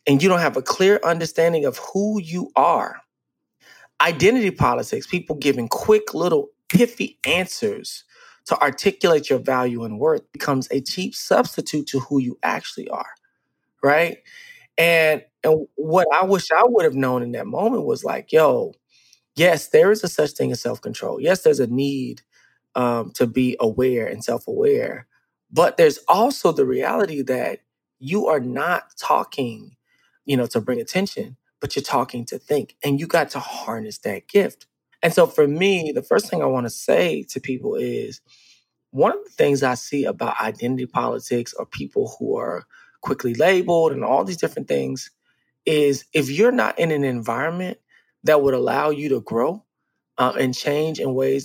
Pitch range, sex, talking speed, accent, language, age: 130-205 Hz, male, 170 wpm, American, English, 20-39